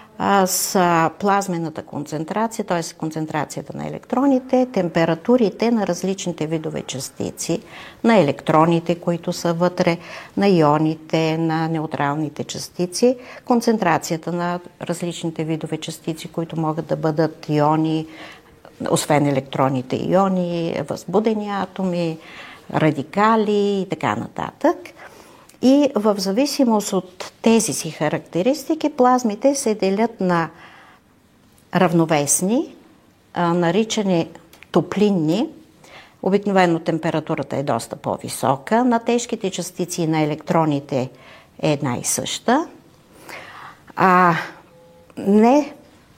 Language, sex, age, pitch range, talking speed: Bulgarian, female, 50-69, 160-210 Hz, 90 wpm